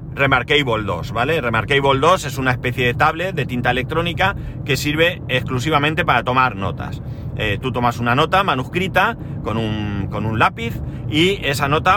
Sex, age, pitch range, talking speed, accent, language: male, 30-49, 120-150 Hz, 165 wpm, Spanish, Spanish